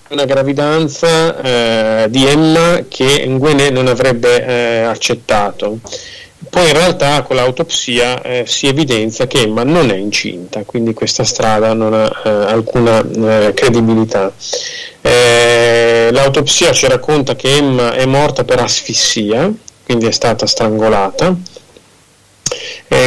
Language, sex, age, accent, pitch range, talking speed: Italian, male, 30-49, native, 115-145 Hz, 125 wpm